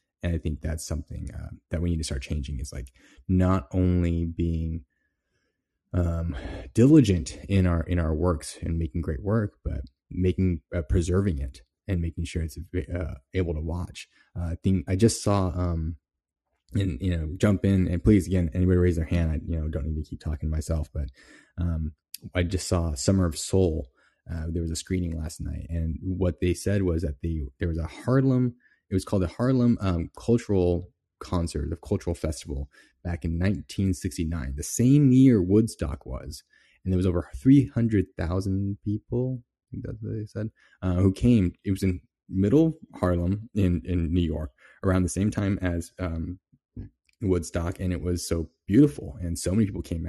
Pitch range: 80-95 Hz